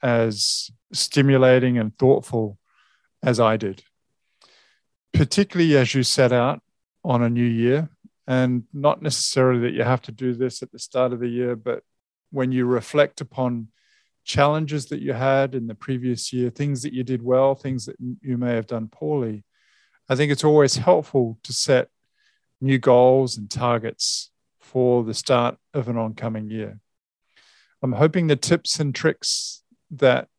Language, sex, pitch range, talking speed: English, male, 120-140 Hz, 160 wpm